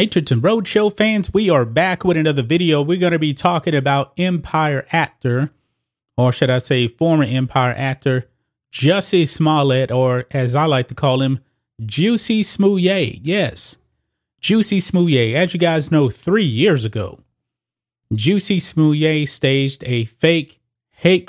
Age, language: 30-49, English